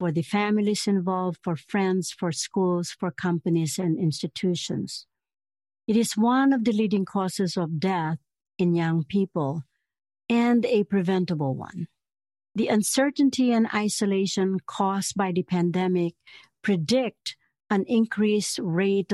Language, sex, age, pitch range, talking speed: English, female, 60-79, 165-205 Hz, 125 wpm